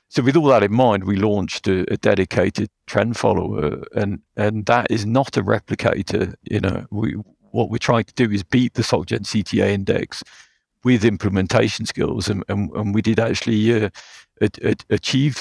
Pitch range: 95-115 Hz